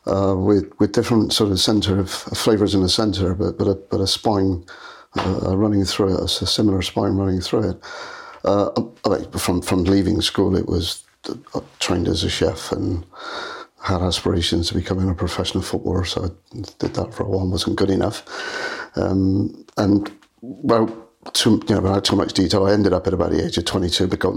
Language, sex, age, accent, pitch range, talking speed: English, male, 50-69, British, 90-100 Hz, 195 wpm